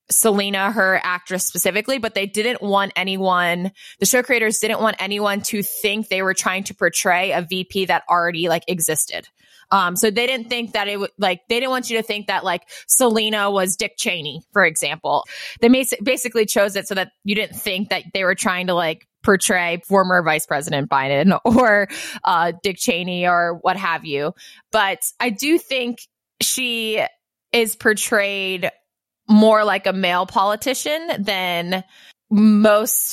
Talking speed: 170 wpm